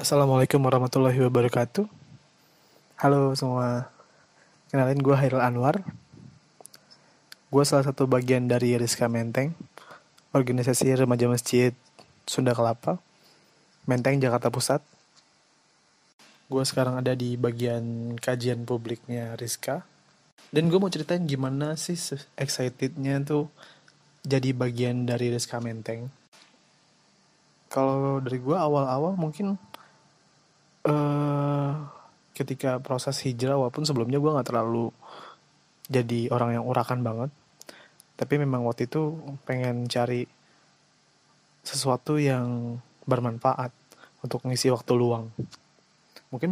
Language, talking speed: Indonesian, 100 wpm